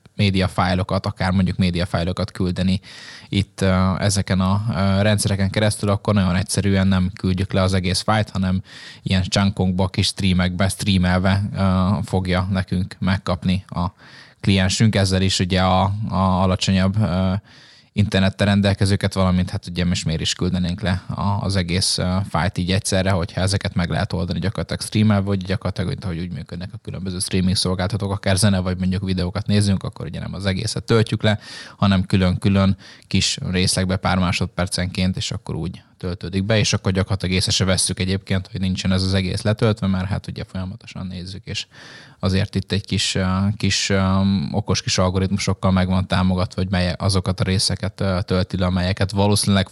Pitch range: 95-100 Hz